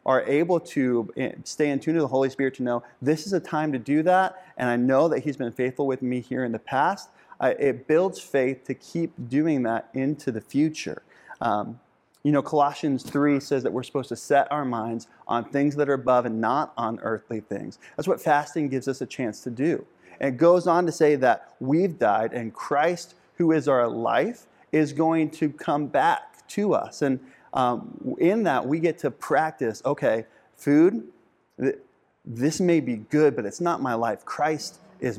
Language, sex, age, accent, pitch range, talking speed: English, male, 30-49, American, 125-155 Hz, 200 wpm